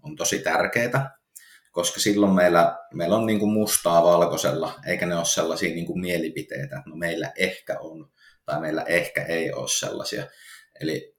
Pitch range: 85-105 Hz